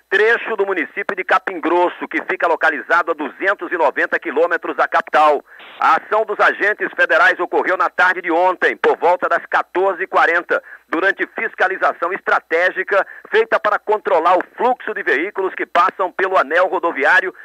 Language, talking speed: Portuguese, 150 wpm